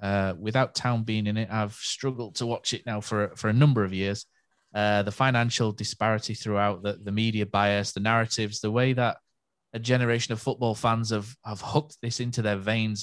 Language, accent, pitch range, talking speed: English, British, 110-130 Hz, 205 wpm